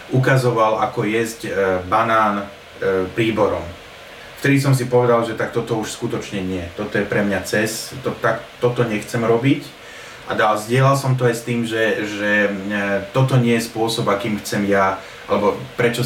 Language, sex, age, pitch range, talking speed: Slovak, male, 30-49, 100-120 Hz, 155 wpm